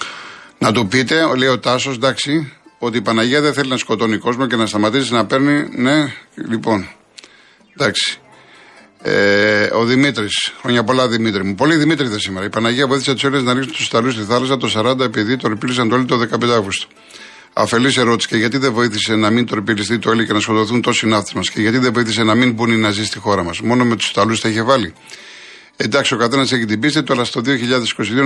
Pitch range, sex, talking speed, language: 110-135 Hz, male, 210 wpm, Greek